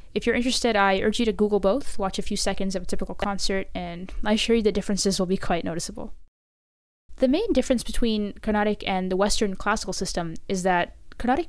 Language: English